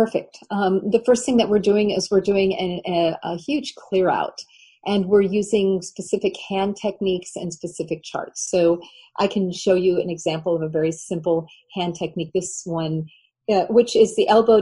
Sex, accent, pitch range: female, American, 170-205 Hz